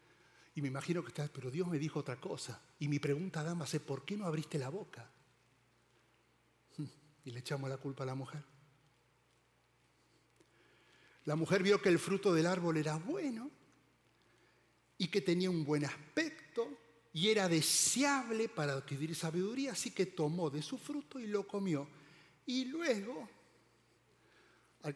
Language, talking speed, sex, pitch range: Spanish, 155 wpm, male, 140-195 Hz